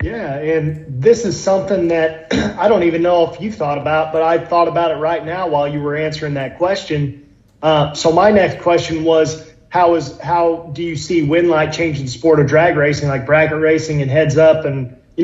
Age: 30-49